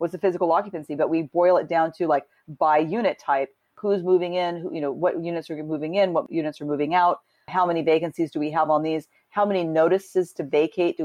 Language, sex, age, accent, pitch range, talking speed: English, female, 40-59, American, 150-185 Hz, 240 wpm